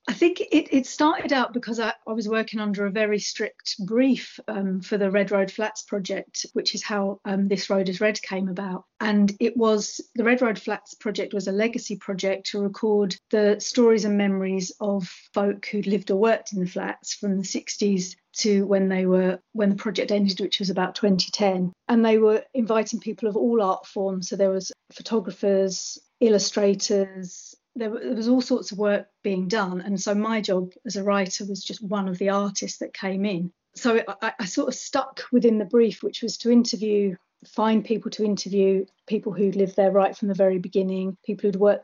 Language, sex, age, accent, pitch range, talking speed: English, female, 40-59, British, 195-225 Hz, 205 wpm